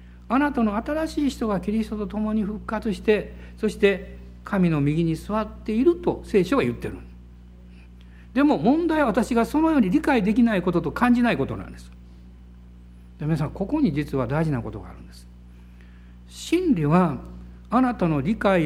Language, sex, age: Japanese, male, 60-79